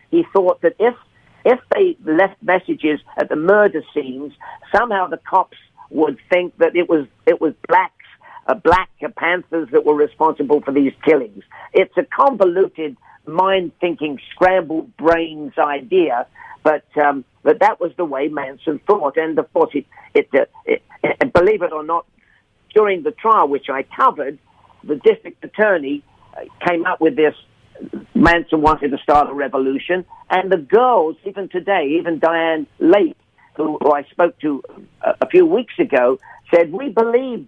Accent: British